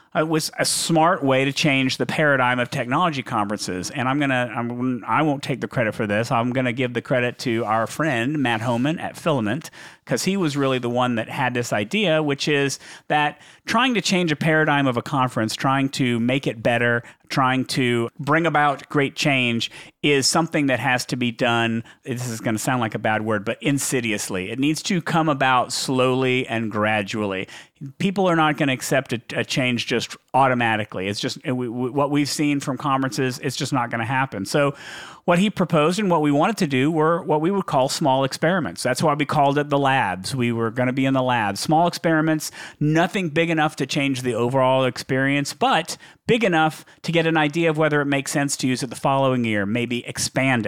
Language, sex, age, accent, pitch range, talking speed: English, male, 40-59, American, 125-150 Hz, 210 wpm